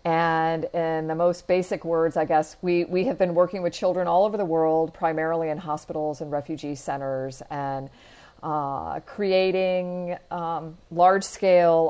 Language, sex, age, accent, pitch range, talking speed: English, female, 40-59, American, 150-180 Hz, 150 wpm